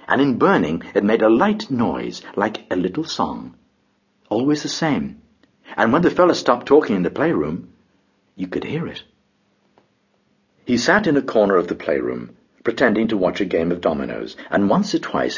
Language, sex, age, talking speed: English, male, 60-79, 185 wpm